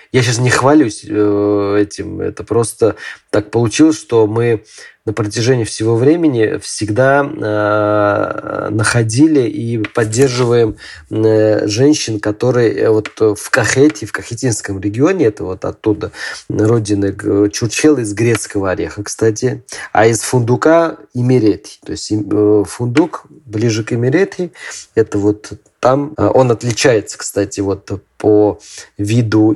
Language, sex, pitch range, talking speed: Russian, male, 105-125 Hz, 110 wpm